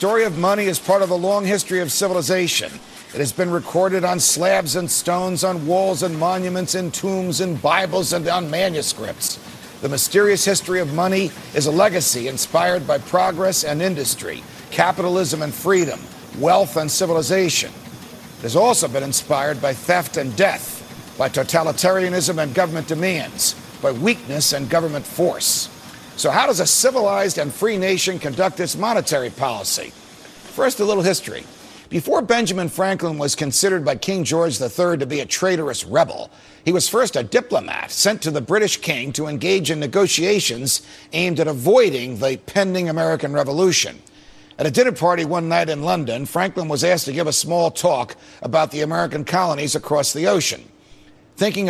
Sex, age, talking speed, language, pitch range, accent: male, 50-69, 165 wpm, English, 150-185 Hz, American